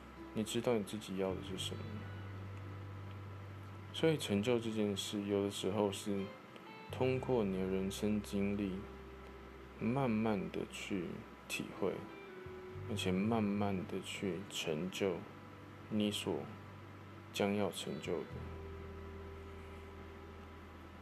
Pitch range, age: 80-105 Hz, 20-39